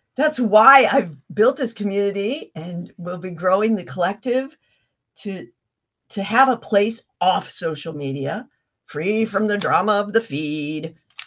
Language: English